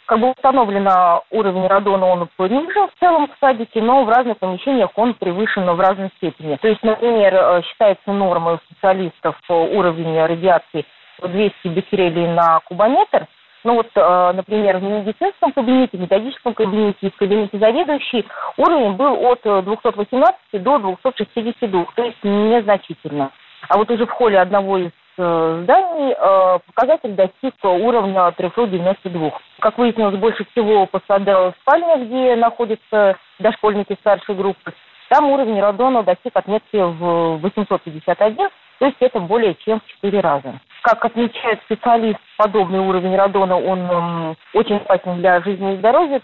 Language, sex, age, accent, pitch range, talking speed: Russian, female, 30-49, native, 180-235 Hz, 145 wpm